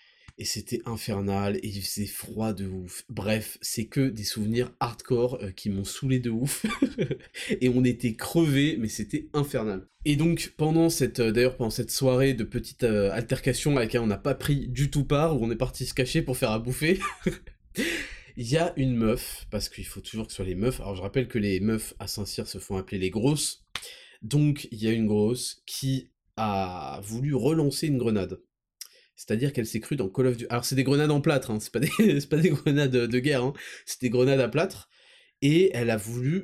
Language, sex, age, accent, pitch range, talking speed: French, male, 20-39, French, 110-150 Hz, 215 wpm